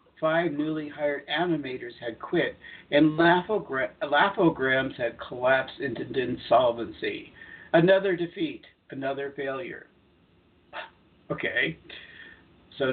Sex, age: male, 60-79